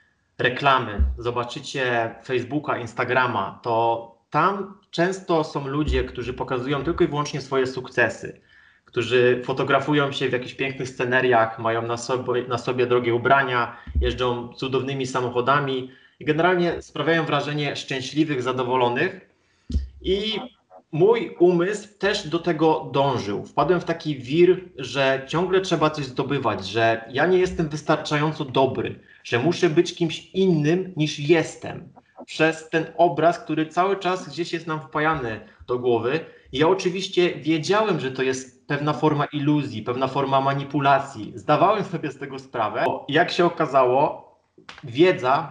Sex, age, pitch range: male, 20-39, 125-165 Hz